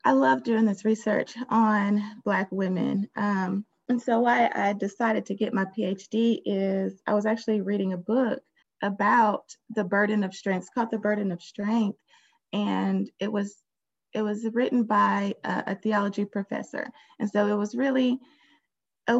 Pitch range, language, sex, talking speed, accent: 195-225 Hz, English, female, 165 wpm, American